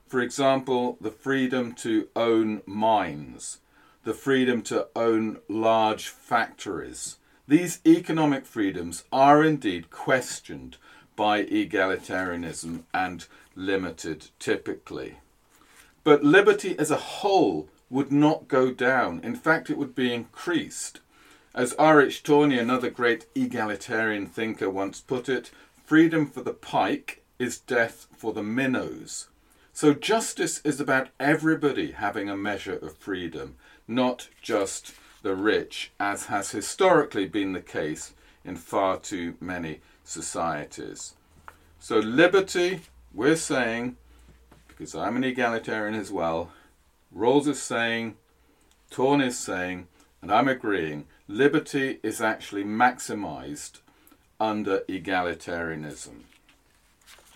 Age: 40-59